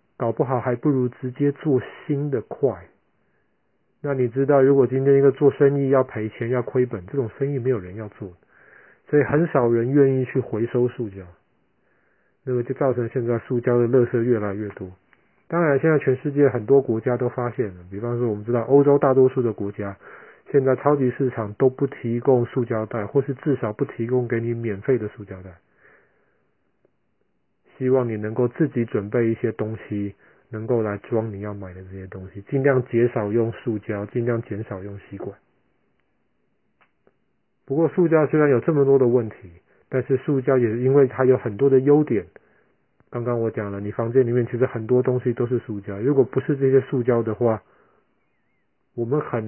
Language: Chinese